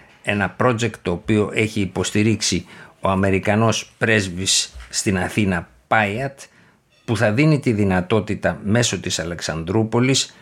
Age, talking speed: 60-79, 115 wpm